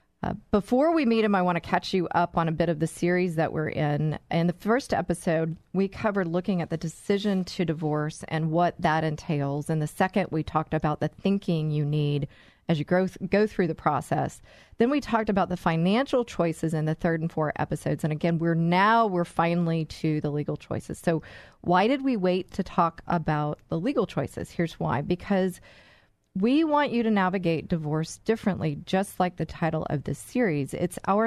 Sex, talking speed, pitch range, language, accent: female, 205 wpm, 160-205 Hz, English, American